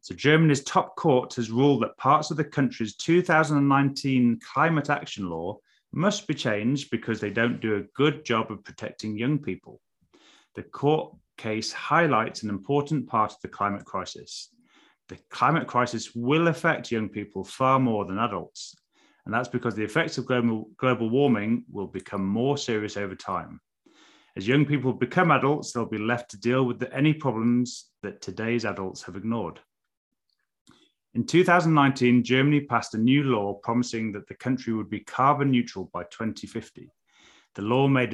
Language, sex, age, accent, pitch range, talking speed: English, male, 30-49, British, 110-145 Hz, 165 wpm